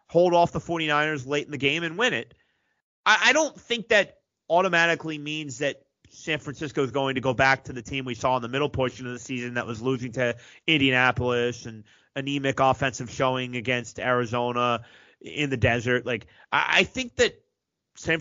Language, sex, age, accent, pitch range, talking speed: English, male, 30-49, American, 125-155 Hz, 190 wpm